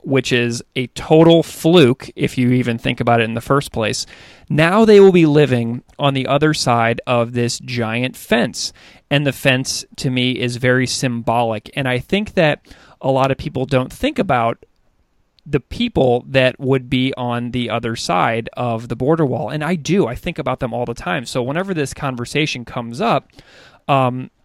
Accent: American